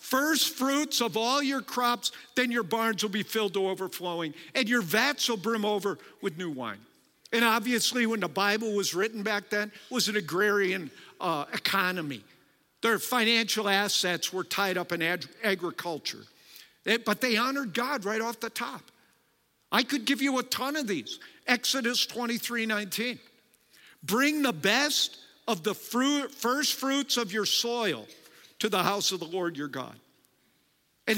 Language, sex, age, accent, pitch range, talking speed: English, male, 50-69, American, 200-255 Hz, 160 wpm